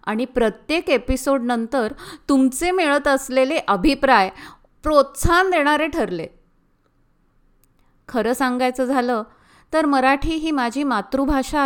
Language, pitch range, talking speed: Marathi, 215-275 Hz, 95 wpm